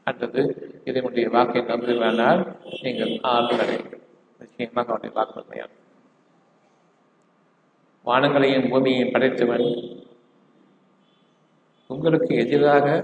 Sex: male